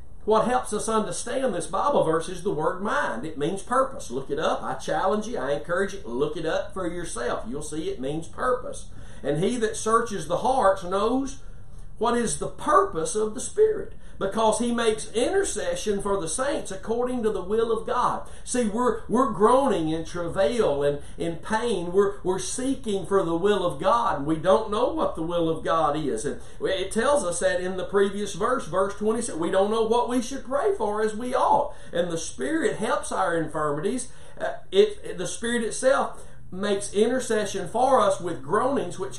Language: English